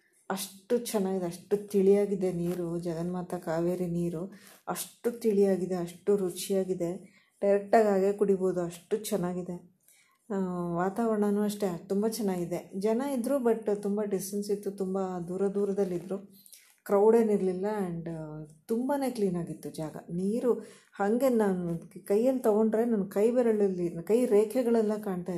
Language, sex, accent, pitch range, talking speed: Kannada, female, native, 175-210 Hz, 110 wpm